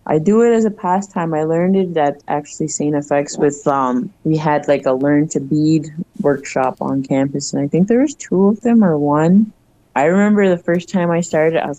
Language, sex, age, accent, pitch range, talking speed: French, female, 20-39, American, 140-170 Hz, 225 wpm